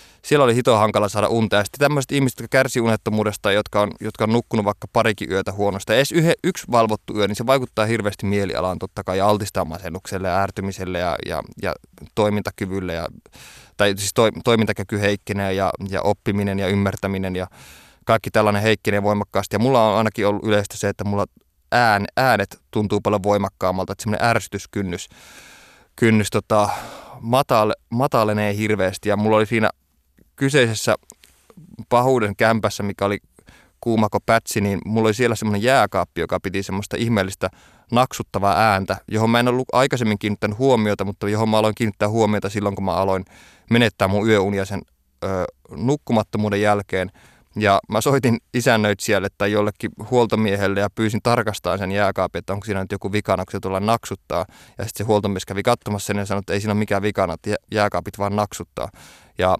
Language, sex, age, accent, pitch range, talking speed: Finnish, male, 20-39, native, 100-110 Hz, 170 wpm